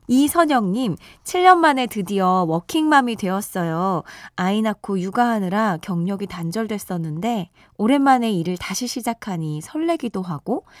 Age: 20-39